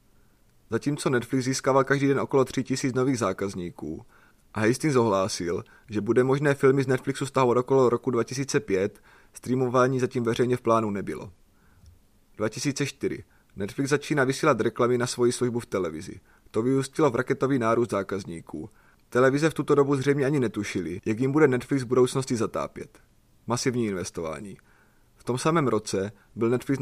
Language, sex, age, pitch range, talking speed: Czech, male, 30-49, 110-135 Hz, 150 wpm